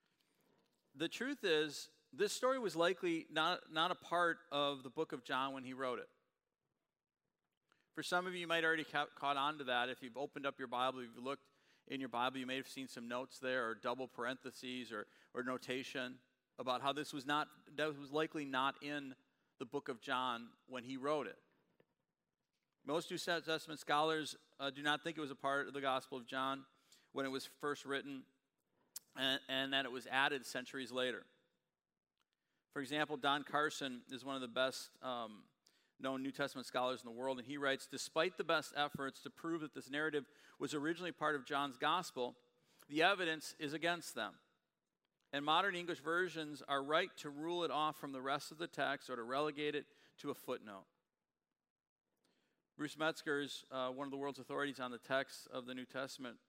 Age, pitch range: 40-59, 130-155 Hz